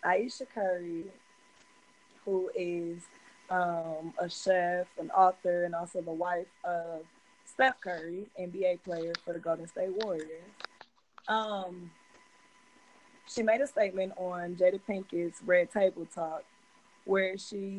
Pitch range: 170-195 Hz